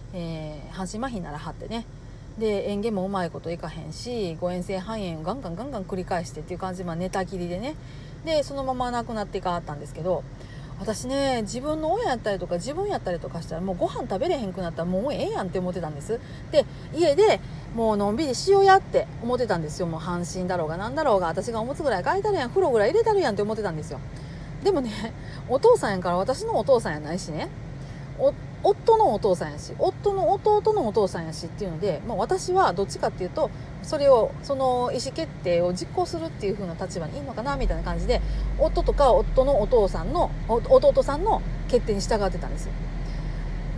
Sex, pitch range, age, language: female, 165-275 Hz, 40-59, Japanese